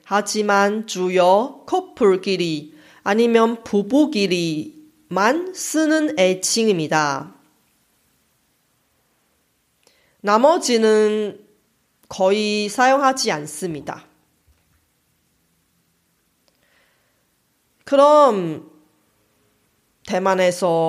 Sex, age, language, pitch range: female, 30-49, Korean, 180-270 Hz